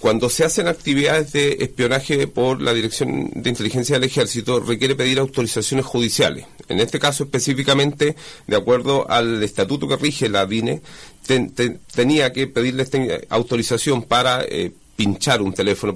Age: 40-59